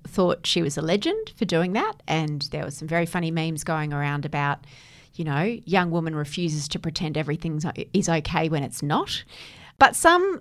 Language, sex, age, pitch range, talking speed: English, female, 30-49, 160-230 Hz, 190 wpm